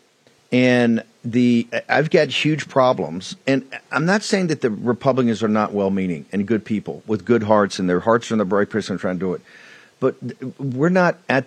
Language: English